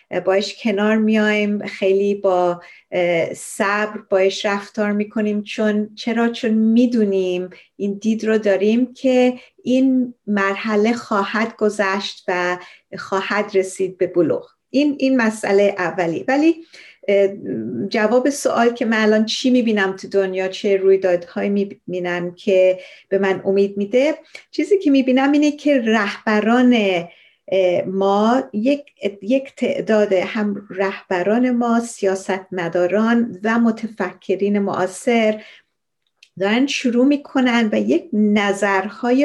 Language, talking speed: Persian, 115 wpm